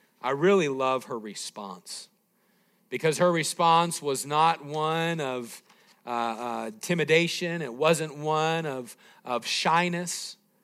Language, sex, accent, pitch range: English, male, American, 145-205 Hz